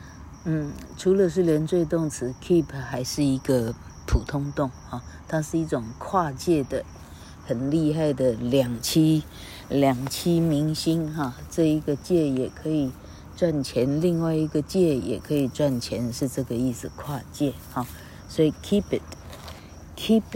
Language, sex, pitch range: Chinese, female, 125-160 Hz